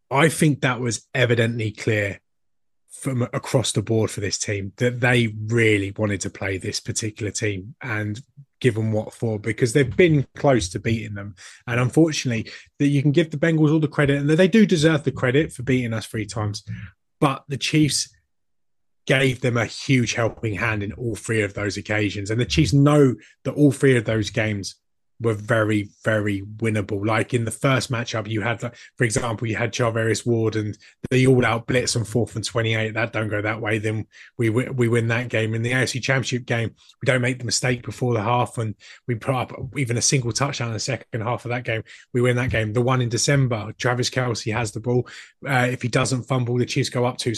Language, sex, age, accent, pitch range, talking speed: English, male, 20-39, British, 110-130 Hz, 215 wpm